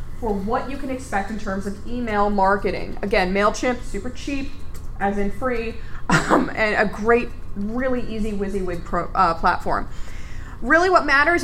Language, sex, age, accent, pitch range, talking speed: English, female, 20-39, American, 195-260 Hz, 150 wpm